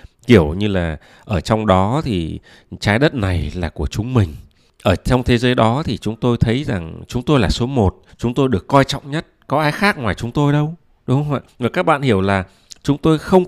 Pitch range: 95-130 Hz